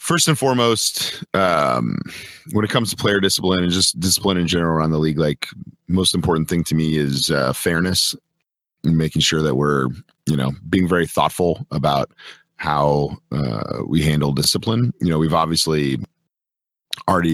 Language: English